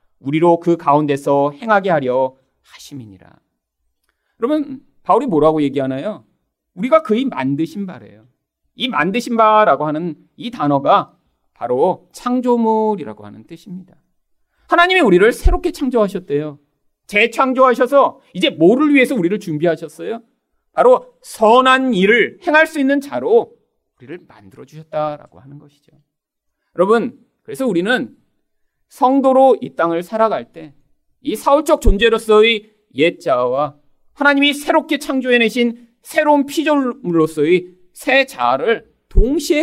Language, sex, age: Korean, male, 40-59